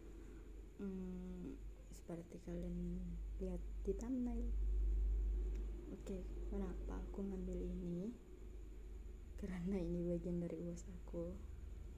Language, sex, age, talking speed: Indonesian, female, 20-39, 90 wpm